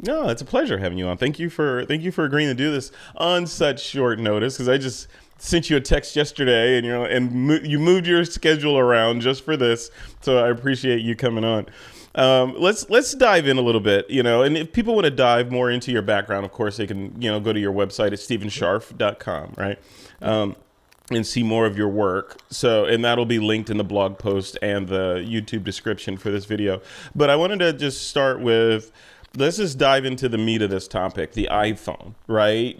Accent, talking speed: American, 225 wpm